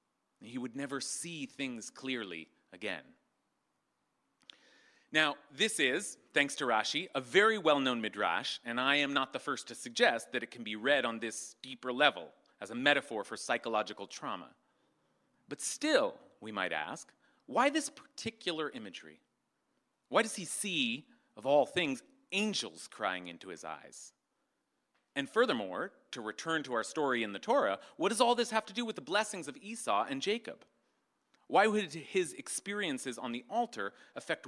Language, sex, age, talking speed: English, male, 40-59, 160 wpm